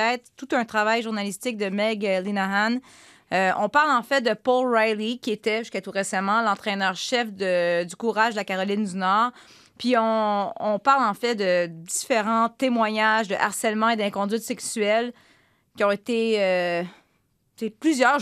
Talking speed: 160 wpm